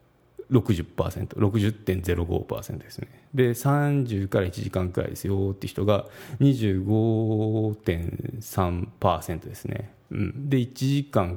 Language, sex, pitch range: Japanese, male, 95-120 Hz